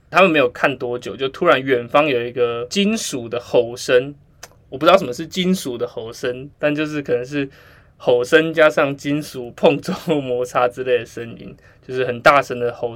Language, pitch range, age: Chinese, 120-145 Hz, 20-39